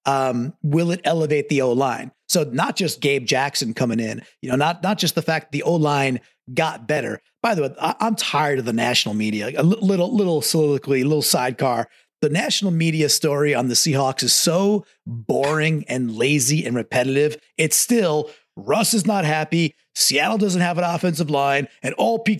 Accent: American